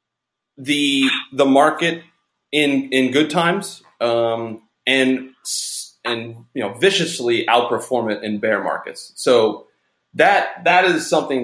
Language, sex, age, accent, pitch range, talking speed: English, male, 30-49, American, 110-145 Hz, 120 wpm